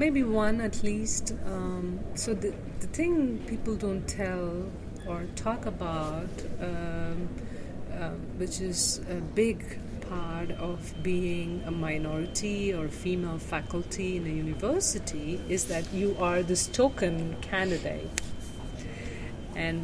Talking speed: 120 wpm